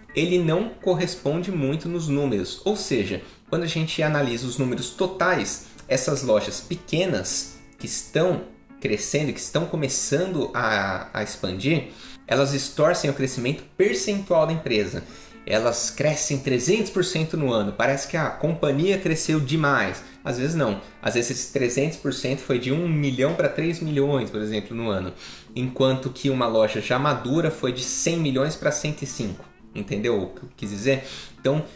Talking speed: 155 wpm